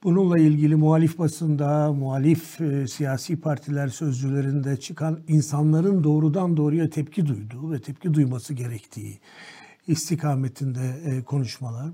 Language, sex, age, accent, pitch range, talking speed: Turkish, male, 60-79, native, 140-165 Hz, 110 wpm